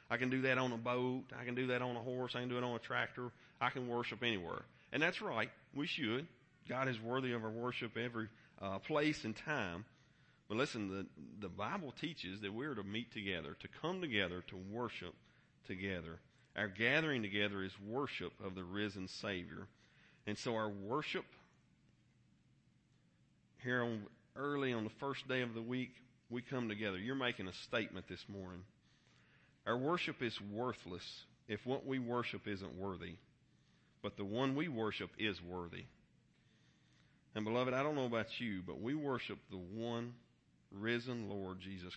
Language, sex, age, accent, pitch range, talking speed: English, male, 40-59, American, 100-125 Hz, 175 wpm